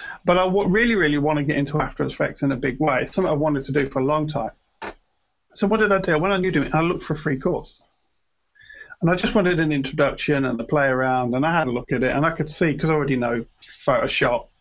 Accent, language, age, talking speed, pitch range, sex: British, English, 40-59, 265 wpm, 140-195 Hz, male